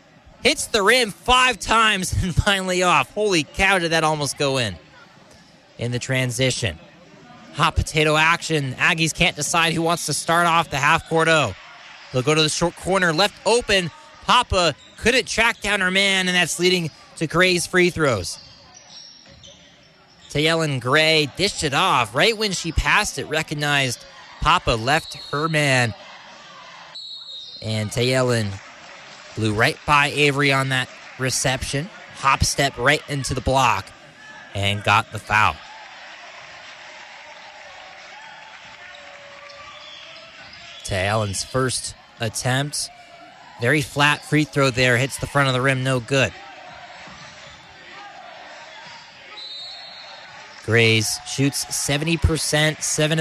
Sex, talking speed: male, 120 wpm